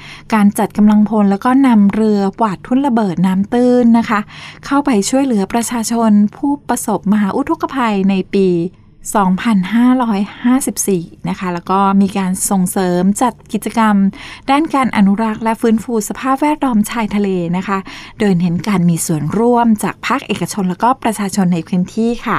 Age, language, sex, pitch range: 20-39, Thai, female, 185-230 Hz